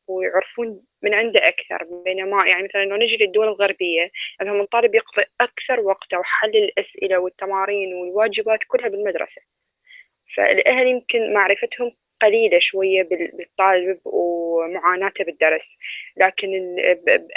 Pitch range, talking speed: 185-235 Hz, 115 wpm